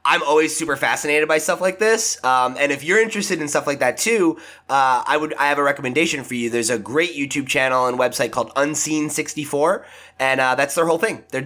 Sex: male